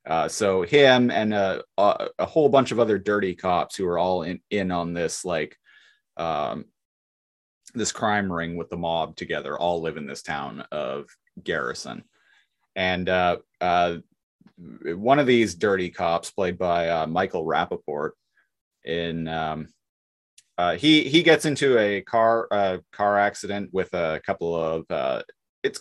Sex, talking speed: male, 155 wpm